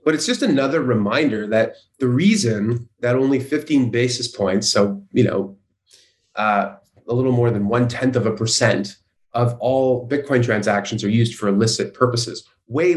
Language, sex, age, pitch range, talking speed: English, male, 30-49, 115-150 Hz, 165 wpm